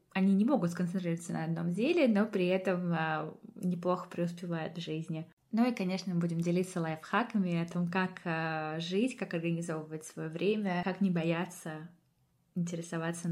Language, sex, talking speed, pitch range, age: Russian, female, 150 wpm, 165-195 Hz, 20-39